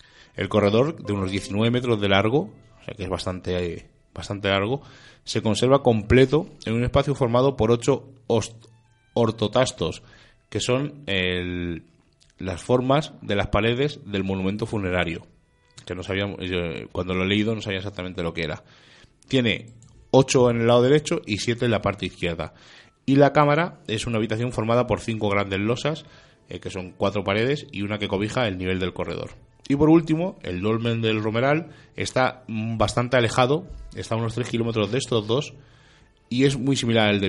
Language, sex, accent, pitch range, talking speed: Spanish, male, Spanish, 100-130 Hz, 180 wpm